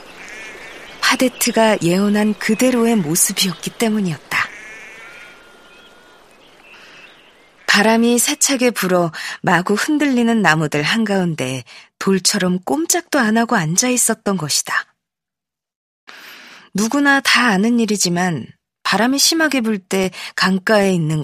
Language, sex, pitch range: Korean, female, 175-240 Hz